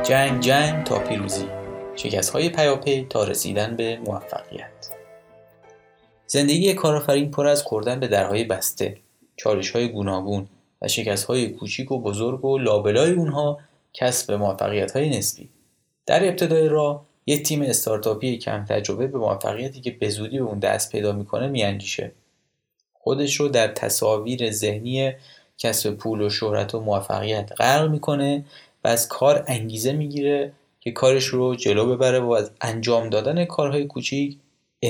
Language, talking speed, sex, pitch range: Persian, 140 wpm, male, 110-145 Hz